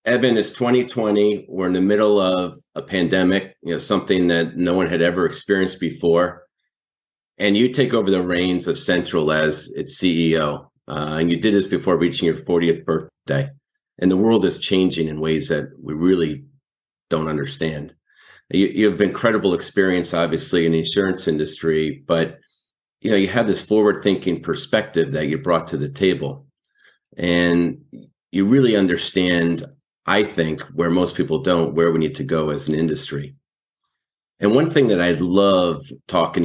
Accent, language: American, English